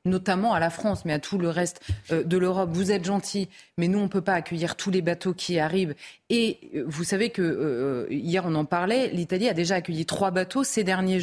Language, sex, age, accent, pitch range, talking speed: French, female, 30-49, French, 170-220 Hz, 230 wpm